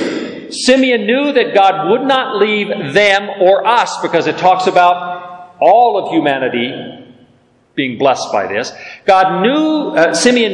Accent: American